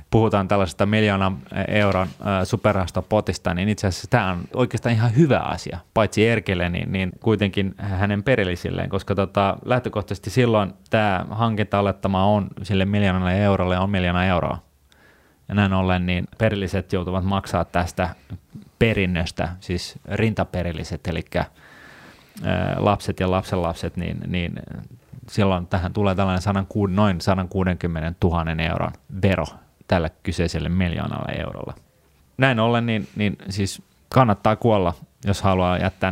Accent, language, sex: native, Finnish, male